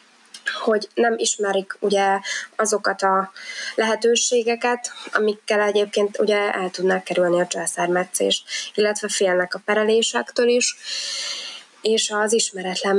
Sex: female